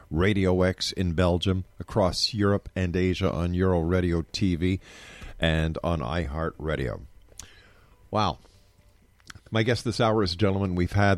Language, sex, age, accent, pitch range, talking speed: English, male, 50-69, American, 90-110 Hz, 135 wpm